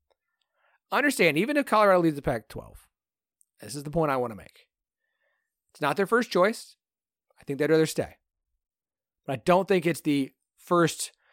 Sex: male